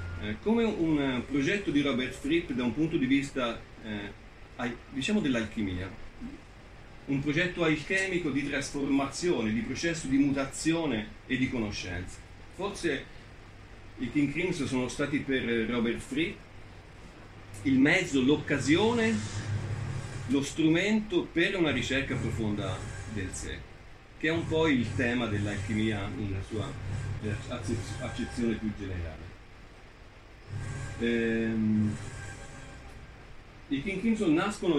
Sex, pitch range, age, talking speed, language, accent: male, 105-135 Hz, 40-59, 110 wpm, Italian, native